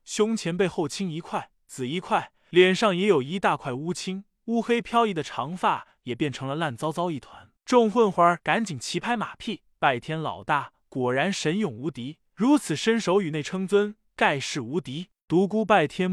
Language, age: Chinese, 20-39